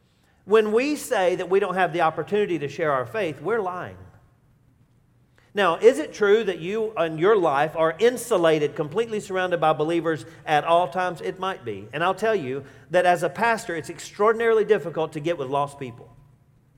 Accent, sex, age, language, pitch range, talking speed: American, male, 40-59, English, 135-190 Hz, 185 wpm